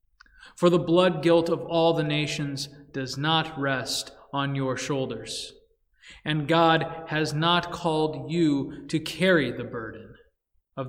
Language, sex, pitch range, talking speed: English, male, 150-215 Hz, 140 wpm